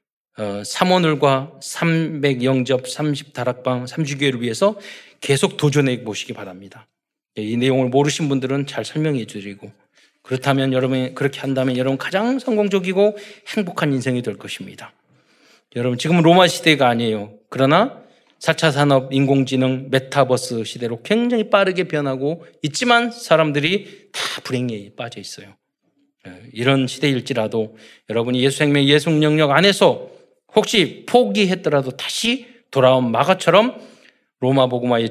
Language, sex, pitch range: Korean, male, 115-155 Hz